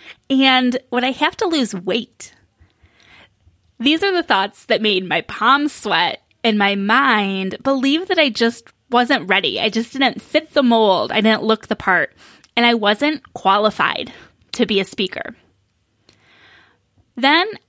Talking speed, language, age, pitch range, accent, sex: 155 wpm, English, 10-29, 210-270 Hz, American, female